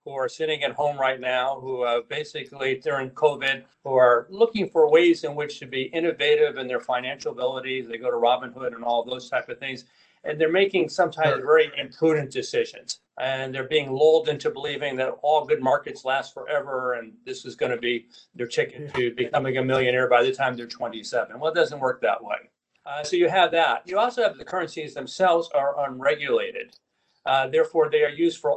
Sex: male